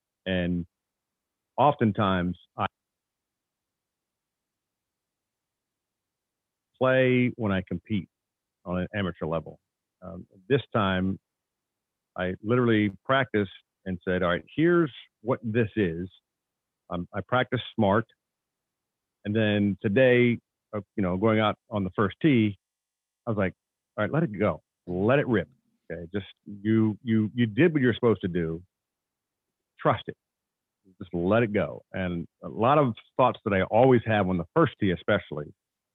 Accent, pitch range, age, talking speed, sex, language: American, 90-115 Hz, 50-69, 135 wpm, male, English